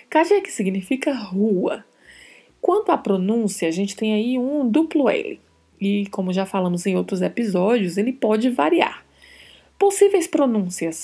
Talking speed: 140 wpm